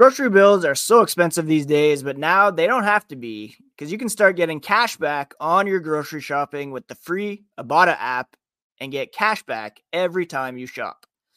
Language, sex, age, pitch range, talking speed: English, male, 20-39, 140-185 Hz, 200 wpm